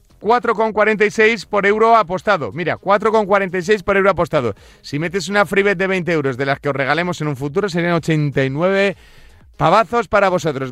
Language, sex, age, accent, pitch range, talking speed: Spanish, male, 30-49, Spanish, 150-205 Hz, 160 wpm